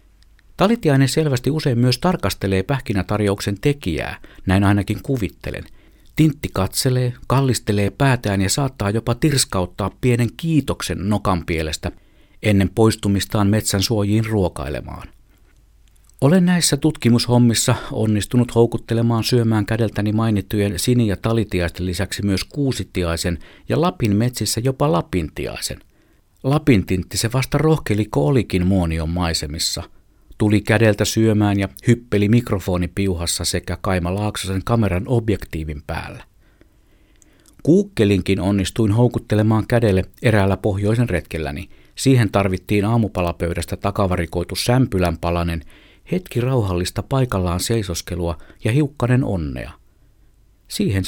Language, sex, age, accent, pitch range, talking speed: Finnish, male, 50-69, native, 95-120 Hz, 100 wpm